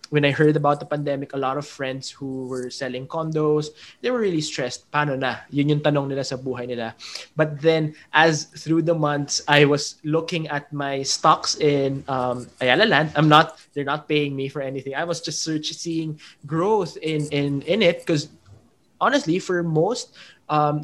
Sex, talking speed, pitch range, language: male, 185 wpm, 135-155 Hz, English